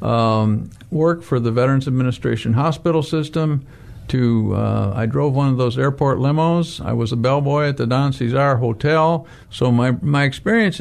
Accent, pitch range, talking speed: American, 120-150 Hz, 165 wpm